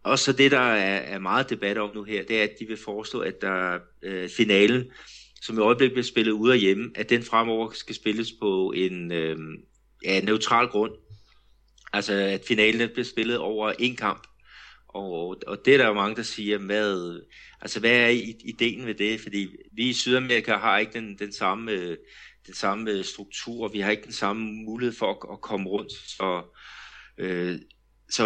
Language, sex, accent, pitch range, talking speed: Danish, male, native, 100-115 Hz, 185 wpm